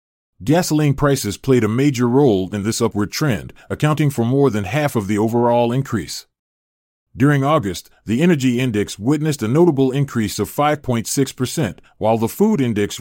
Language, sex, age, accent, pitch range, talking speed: English, male, 30-49, American, 105-140 Hz, 155 wpm